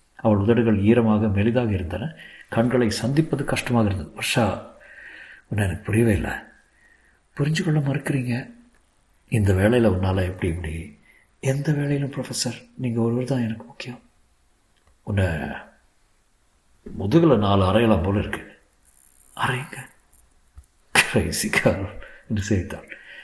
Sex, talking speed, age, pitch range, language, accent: male, 95 wpm, 50-69, 105-145 Hz, Tamil, native